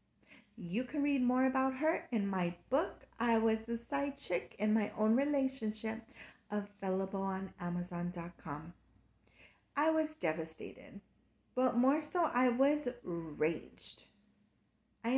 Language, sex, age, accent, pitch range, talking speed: English, female, 30-49, American, 185-245 Hz, 125 wpm